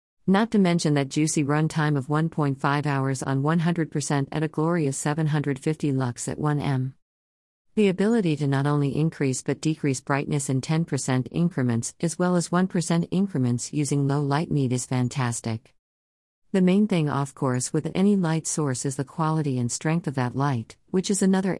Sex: female